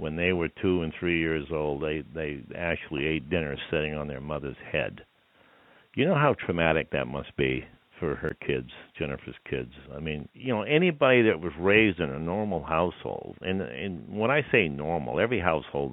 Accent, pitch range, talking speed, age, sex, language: American, 70-85 Hz, 190 wpm, 60-79, male, English